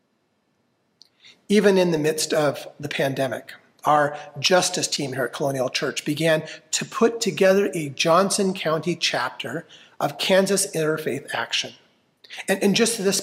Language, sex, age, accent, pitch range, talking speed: English, male, 40-59, American, 175-220 Hz, 135 wpm